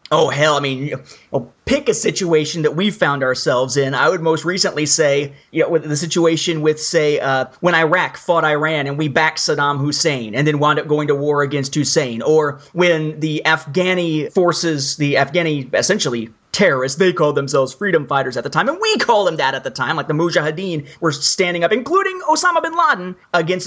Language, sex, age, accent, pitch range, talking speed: English, male, 30-49, American, 145-185 Hz, 215 wpm